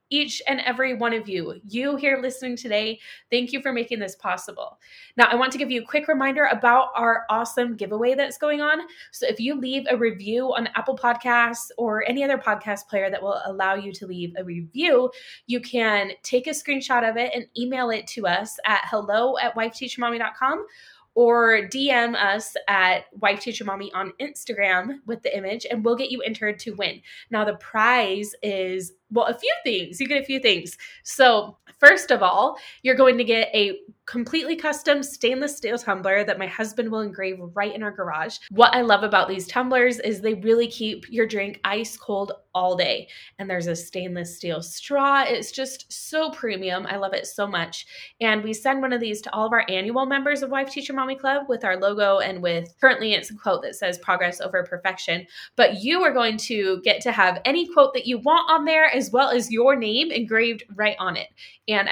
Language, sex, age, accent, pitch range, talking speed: English, female, 20-39, American, 200-260 Hz, 205 wpm